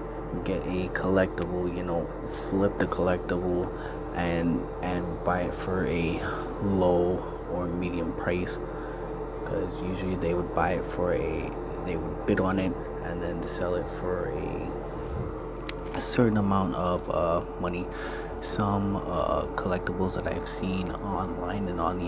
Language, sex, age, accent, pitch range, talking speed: English, male, 20-39, American, 85-95 Hz, 145 wpm